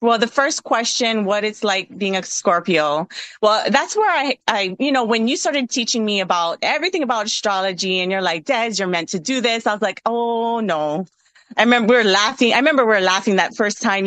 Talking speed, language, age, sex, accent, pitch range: 225 wpm, English, 30-49, female, American, 180-230 Hz